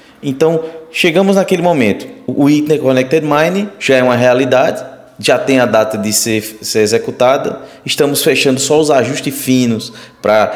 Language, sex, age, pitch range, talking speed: Portuguese, male, 20-39, 105-150 Hz, 150 wpm